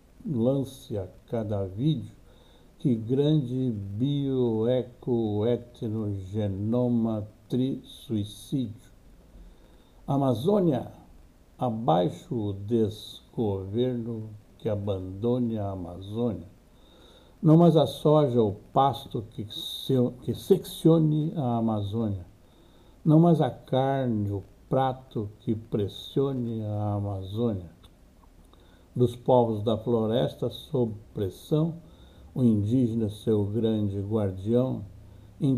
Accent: Brazilian